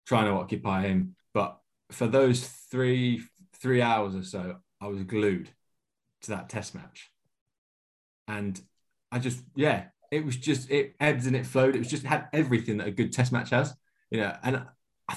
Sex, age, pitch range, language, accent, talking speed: male, 20-39, 115-155 Hz, English, British, 185 wpm